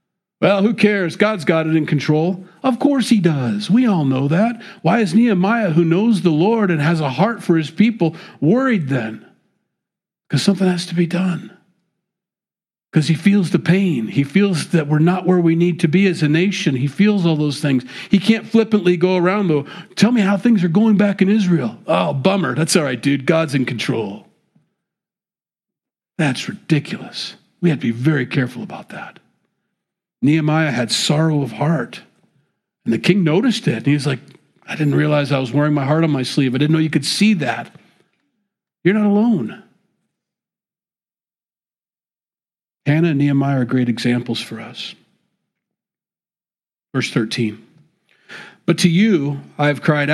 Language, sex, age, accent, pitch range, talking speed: English, male, 50-69, American, 150-200 Hz, 175 wpm